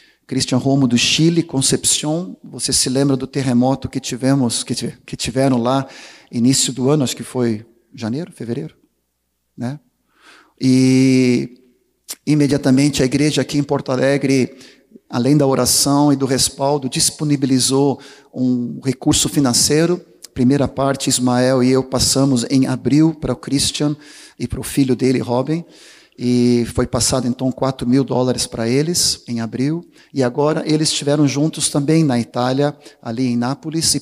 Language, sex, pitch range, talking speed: Portuguese, male, 125-145 Hz, 150 wpm